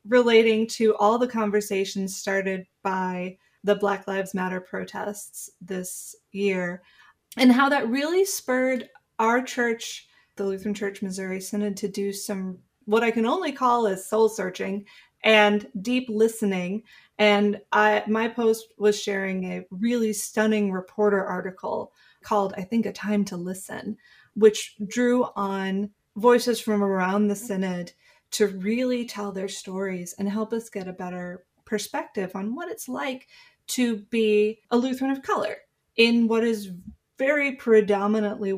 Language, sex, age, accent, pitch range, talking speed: English, female, 20-39, American, 195-240 Hz, 145 wpm